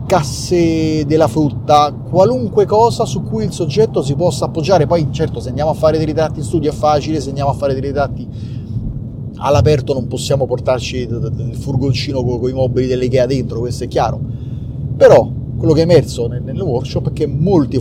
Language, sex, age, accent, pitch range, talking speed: Italian, male, 30-49, native, 125-150 Hz, 190 wpm